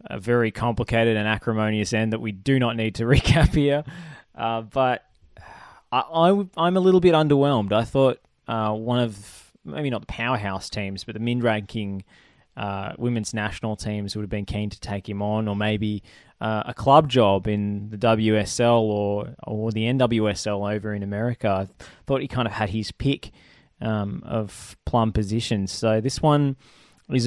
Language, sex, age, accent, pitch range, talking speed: English, male, 20-39, Australian, 105-130 Hz, 175 wpm